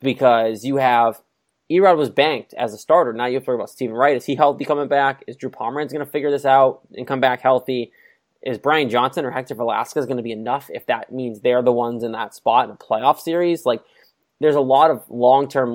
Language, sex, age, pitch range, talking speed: English, male, 20-39, 120-140 Hz, 240 wpm